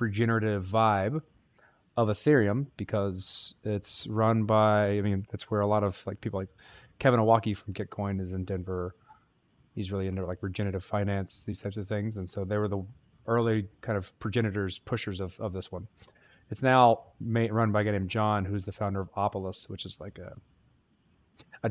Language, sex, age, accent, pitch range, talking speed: English, male, 30-49, American, 100-115 Hz, 190 wpm